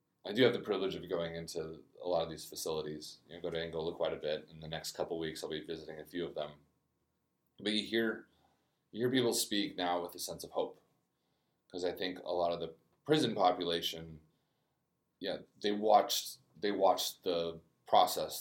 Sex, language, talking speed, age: male, English, 205 wpm, 30-49